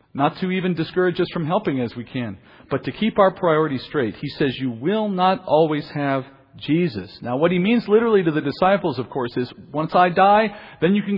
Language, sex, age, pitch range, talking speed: English, male, 40-59, 135-180 Hz, 220 wpm